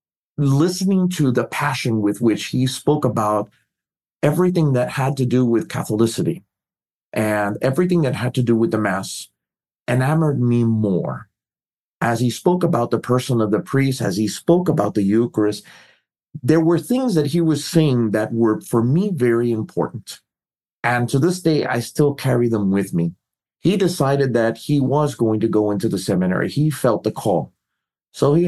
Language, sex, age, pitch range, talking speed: English, male, 40-59, 110-145 Hz, 175 wpm